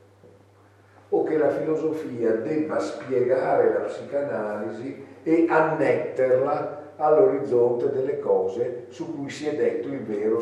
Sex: male